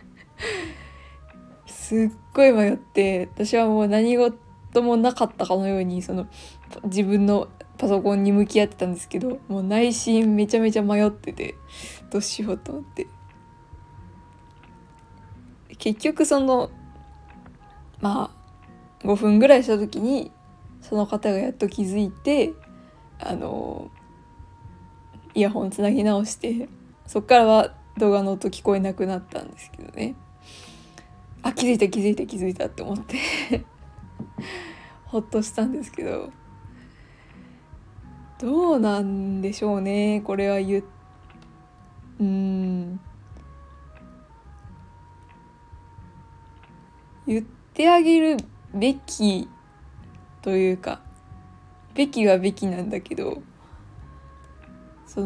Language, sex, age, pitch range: Japanese, female, 20-39, 180-230 Hz